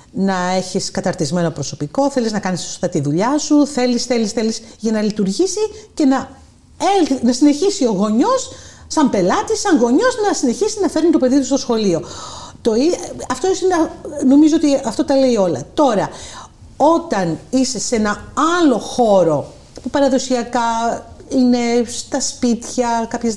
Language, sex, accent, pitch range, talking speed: Greek, female, native, 195-265 Hz, 150 wpm